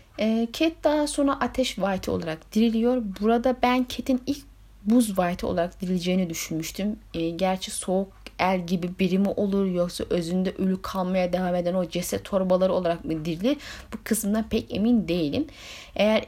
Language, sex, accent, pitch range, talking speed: Turkish, female, native, 185-240 Hz, 150 wpm